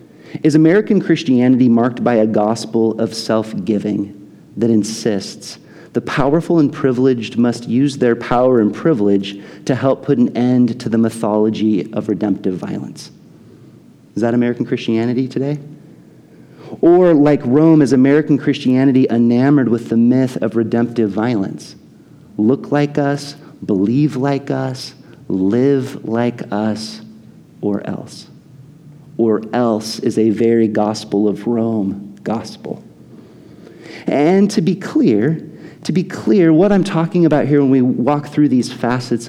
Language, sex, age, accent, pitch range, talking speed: English, male, 40-59, American, 110-145 Hz, 135 wpm